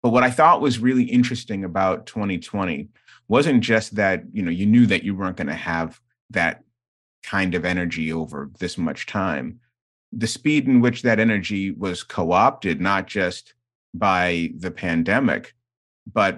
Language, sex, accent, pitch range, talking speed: English, male, American, 95-120 Hz, 160 wpm